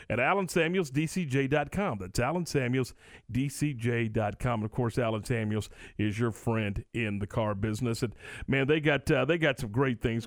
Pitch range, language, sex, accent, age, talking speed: 125-170 Hz, English, male, American, 50-69, 150 wpm